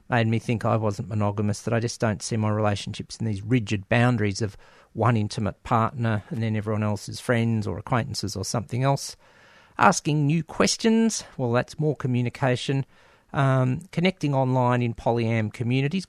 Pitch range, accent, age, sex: 110-135 Hz, Australian, 50-69, male